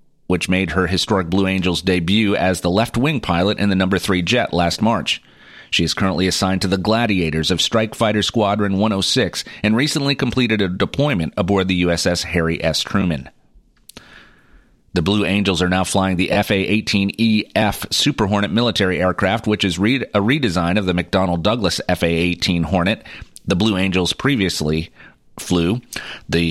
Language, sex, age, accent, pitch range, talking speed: English, male, 30-49, American, 90-115 Hz, 160 wpm